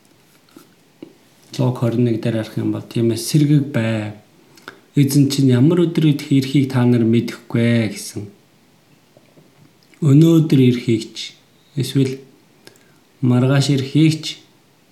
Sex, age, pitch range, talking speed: male, 50-69, 115-140 Hz, 95 wpm